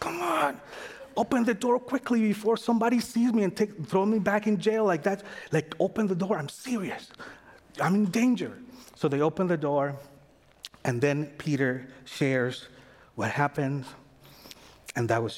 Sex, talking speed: male, 160 wpm